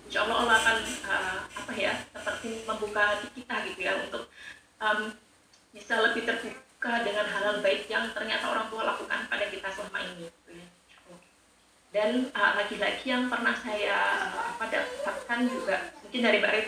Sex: female